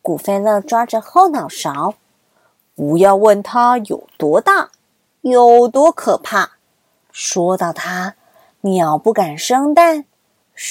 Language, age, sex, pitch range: Chinese, 50-69, female, 190-310 Hz